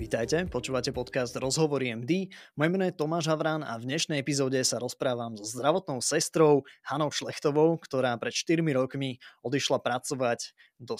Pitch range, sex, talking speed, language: 130-155 Hz, male, 155 wpm, Slovak